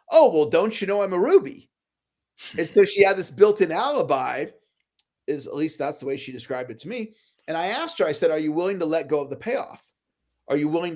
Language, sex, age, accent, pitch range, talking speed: English, male, 40-59, American, 155-255 Hz, 240 wpm